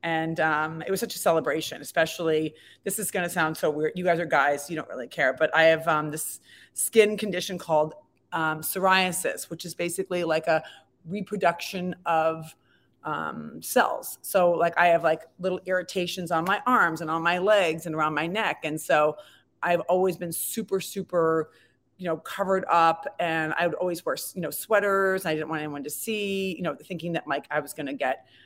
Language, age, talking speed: English, 30-49, 200 wpm